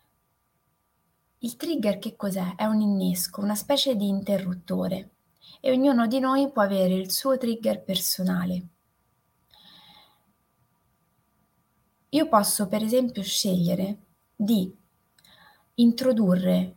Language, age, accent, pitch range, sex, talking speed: Italian, 20-39, native, 180-230 Hz, female, 105 wpm